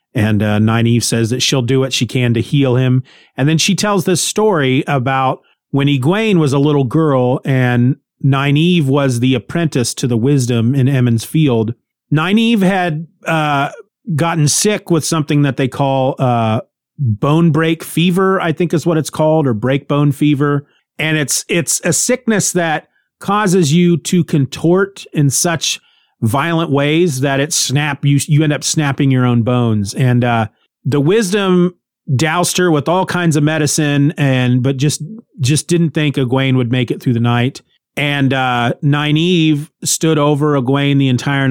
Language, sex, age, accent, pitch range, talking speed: English, male, 40-59, American, 125-160 Hz, 170 wpm